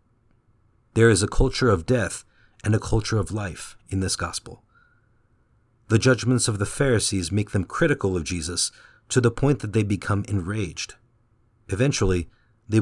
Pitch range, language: 100-120 Hz, English